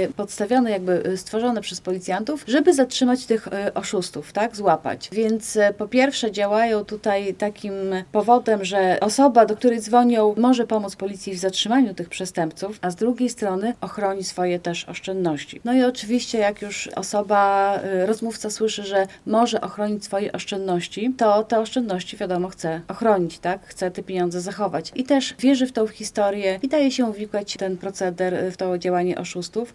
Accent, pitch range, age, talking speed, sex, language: native, 185-225 Hz, 30-49, 155 wpm, female, Polish